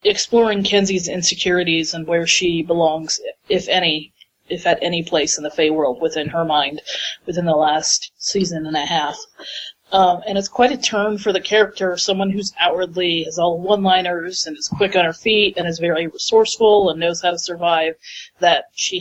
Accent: American